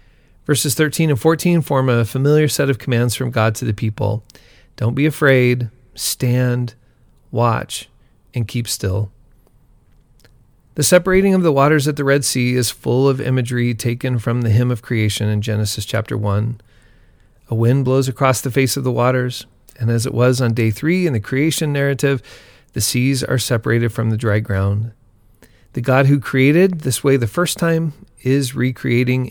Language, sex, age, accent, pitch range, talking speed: English, male, 40-59, American, 110-140 Hz, 175 wpm